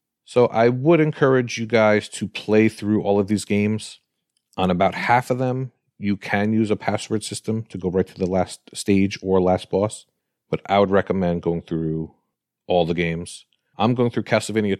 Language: English